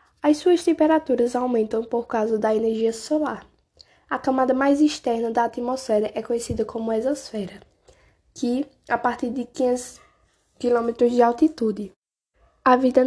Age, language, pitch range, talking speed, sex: 10-29, Portuguese, 220-260 Hz, 135 wpm, female